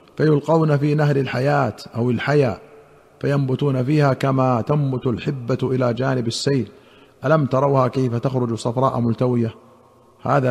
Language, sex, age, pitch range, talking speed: Arabic, male, 50-69, 125-160 Hz, 120 wpm